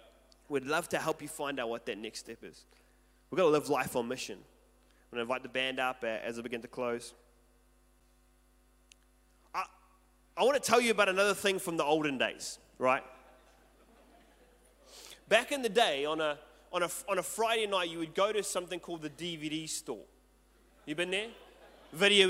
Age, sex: 30-49, male